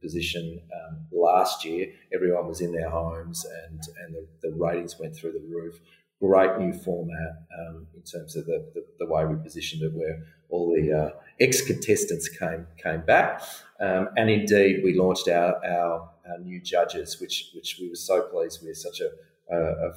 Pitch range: 85-120 Hz